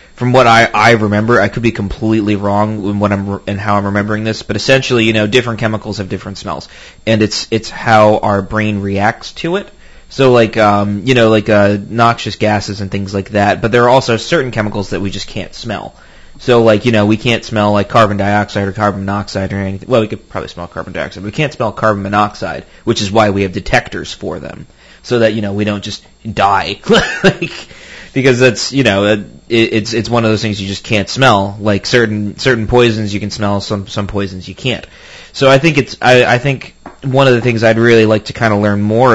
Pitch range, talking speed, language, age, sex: 100-115 Hz, 235 wpm, English, 30-49, male